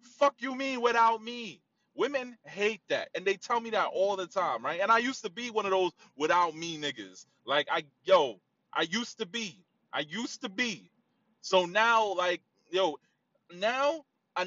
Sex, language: male, English